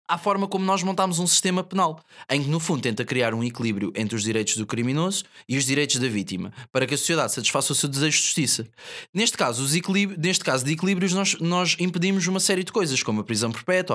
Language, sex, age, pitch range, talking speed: Portuguese, male, 20-39, 145-210 Hz, 235 wpm